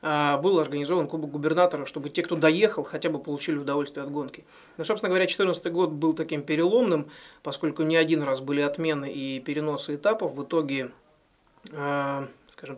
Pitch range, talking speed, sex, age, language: 140-170 Hz, 160 wpm, male, 20-39, Russian